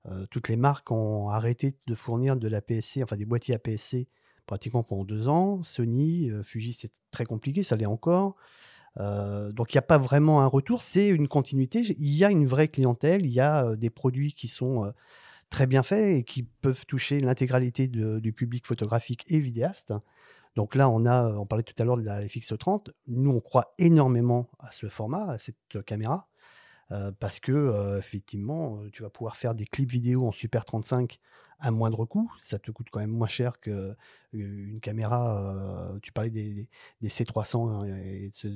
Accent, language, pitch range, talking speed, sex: French, French, 110-140 Hz, 190 wpm, male